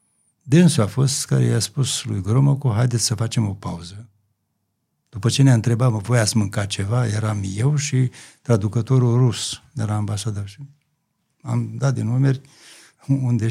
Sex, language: male, Romanian